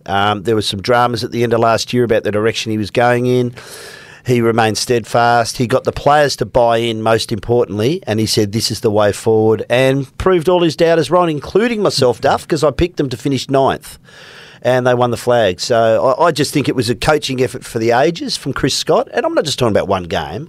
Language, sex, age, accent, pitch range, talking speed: English, male, 40-59, Australian, 110-135 Hz, 245 wpm